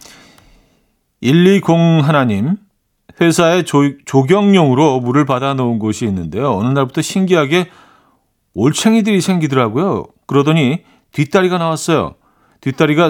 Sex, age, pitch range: male, 40-59, 125-180 Hz